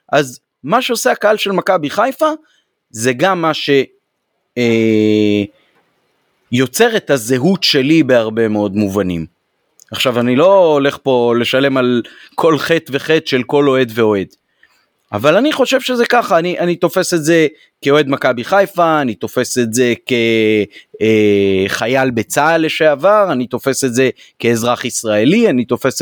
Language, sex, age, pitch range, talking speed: Hebrew, male, 30-49, 120-200 Hz, 140 wpm